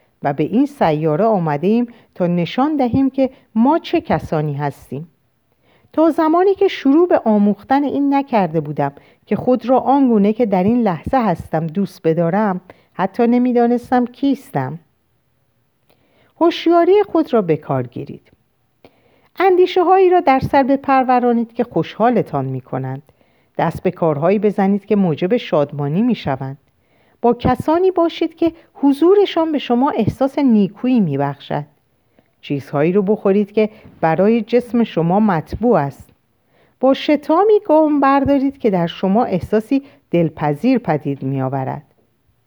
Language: Persian